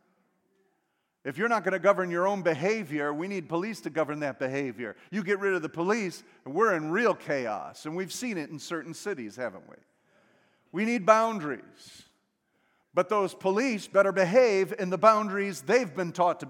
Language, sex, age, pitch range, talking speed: English, male, 50-69, 180-230 Hz, 185 wpm